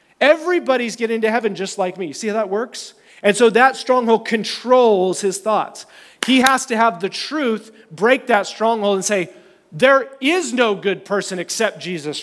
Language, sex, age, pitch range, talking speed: English, male, 30-49, 195-240 Hz, 180 wpm